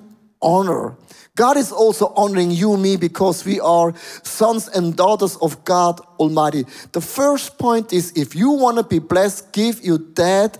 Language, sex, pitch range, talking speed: English, male, 175-225 Hz, 170 wpm